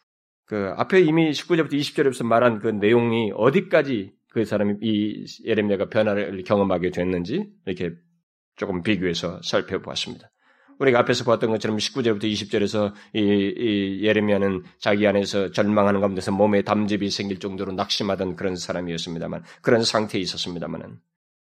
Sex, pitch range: male, 100-135 Hz